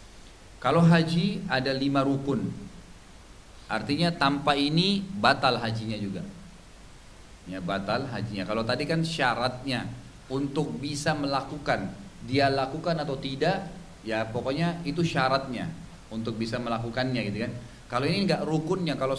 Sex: male